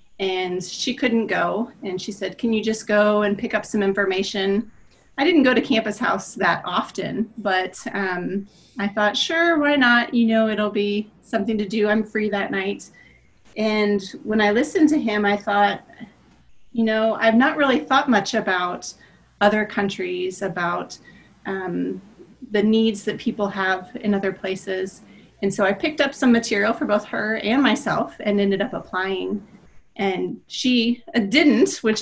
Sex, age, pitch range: female, 30-49, 195-225 Hz